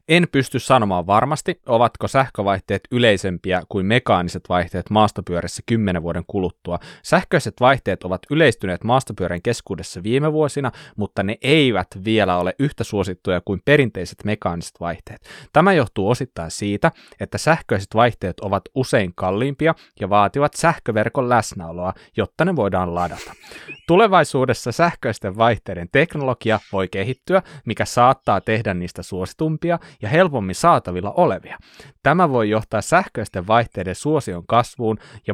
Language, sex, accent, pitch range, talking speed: Finnish, male, native, 100-135 Hz, 125 wpm